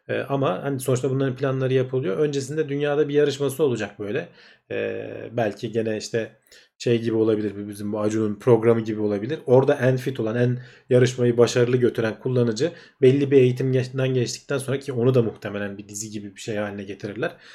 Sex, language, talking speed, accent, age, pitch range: male, Turkish, 165 wpm, native, 40-59, 115-135 Hz